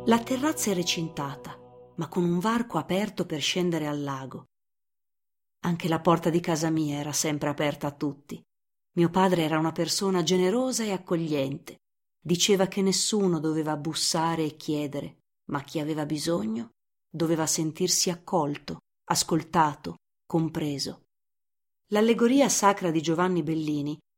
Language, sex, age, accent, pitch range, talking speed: Italian, female, 40-59, native, 155-205 Hz, 130 wpm